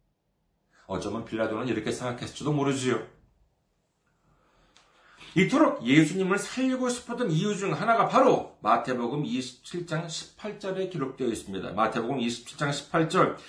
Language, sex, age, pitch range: Korean, male, 40-59, 145-220 Hz